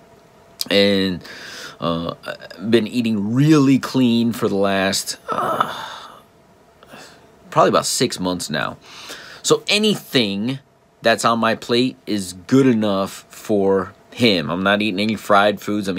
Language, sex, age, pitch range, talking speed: English, male, 30-49, 100-125 Hz, 130 wpm